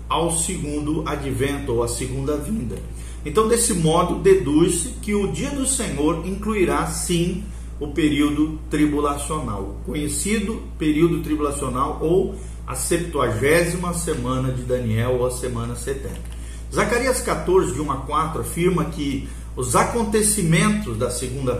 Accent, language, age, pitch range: Brazilian, Portuguese, 40-59, 135-185 Hz